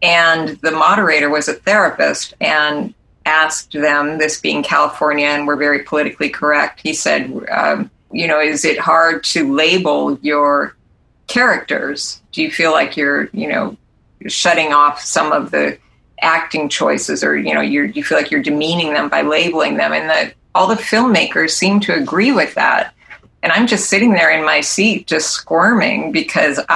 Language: English